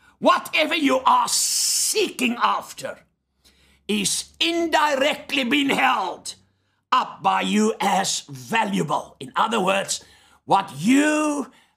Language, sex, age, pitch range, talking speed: English, male, 60-79, 190-260 Hz, 95 wpm